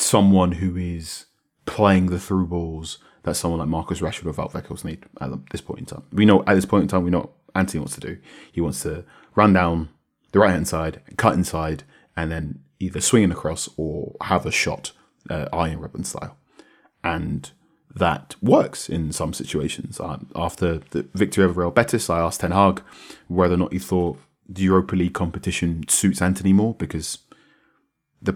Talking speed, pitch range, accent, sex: 190 wpm, 85-100 Hz, British, male